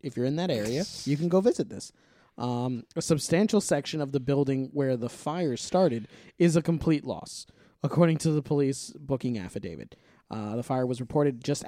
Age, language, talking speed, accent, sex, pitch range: 20-39, English, 190 wpm, American, male, 135-180 Hz